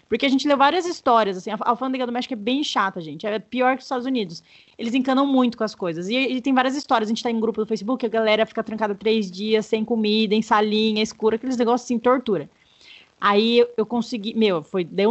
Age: 20-39